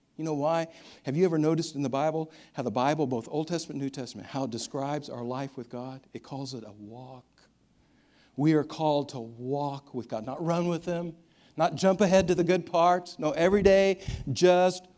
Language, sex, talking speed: English, male, 210 wpm